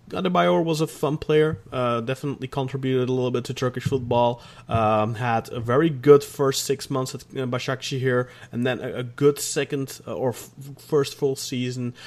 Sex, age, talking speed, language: male, 20-39, 175 wpm, English